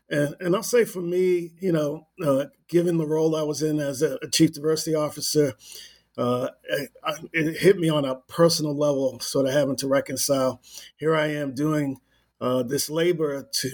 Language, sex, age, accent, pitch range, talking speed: English, male, 50-69, American, 135-160 Hz, 180 wpm